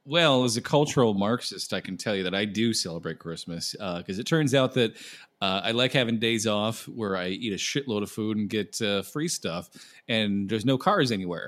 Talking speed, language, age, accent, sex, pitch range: 225 wpm, English, 30-49, American, male, 95-130 Hz